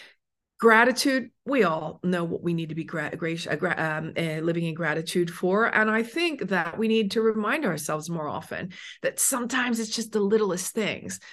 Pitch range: 175-230 Hz